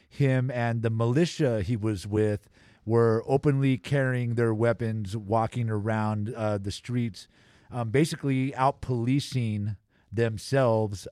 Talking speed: 115 wpm